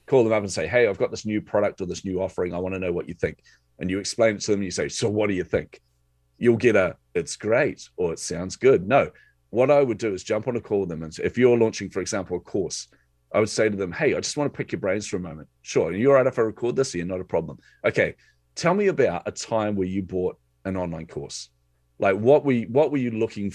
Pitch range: 90-125 Hz